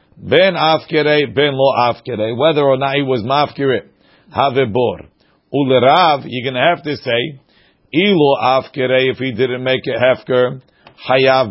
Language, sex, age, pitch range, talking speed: English, male, 50-69, 130-155 Hz, 150 wpm